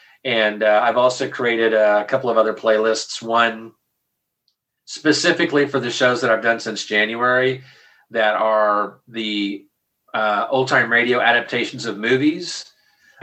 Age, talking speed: 40-59, 140 wpm